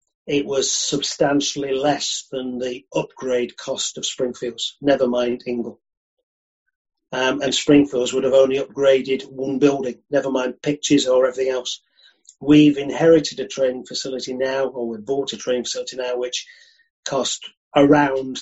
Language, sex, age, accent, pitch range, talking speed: English, male, 40-59, British, 125-145 Hz, 145 wpm